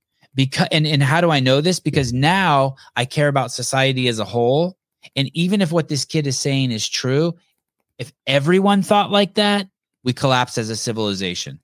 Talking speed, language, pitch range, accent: 190 wpm, English, 115-145 Hz, American